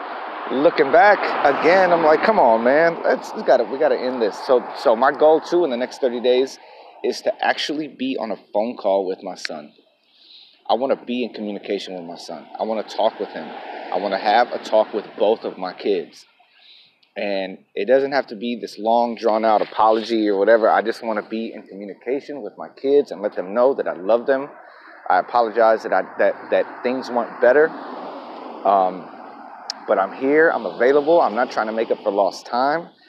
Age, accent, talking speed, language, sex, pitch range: 30-49, American, 215 wpm, English, male, 110-140 Hz